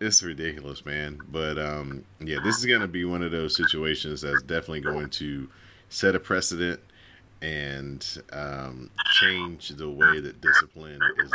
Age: 30-49